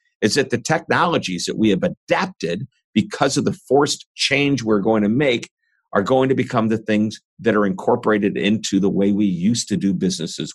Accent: American